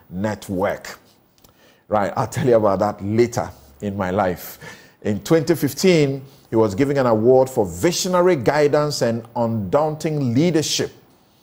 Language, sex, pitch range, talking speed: English, male, 105-135 Hz, 125 wpm